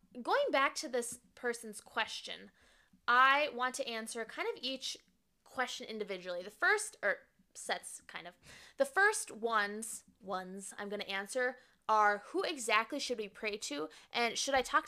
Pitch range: 205-260 Hz